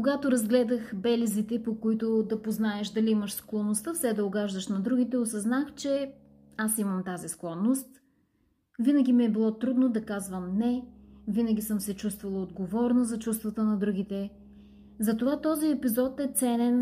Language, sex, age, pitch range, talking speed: Bulgarian, female, 30-49, 210-255 Hz, 155 wpm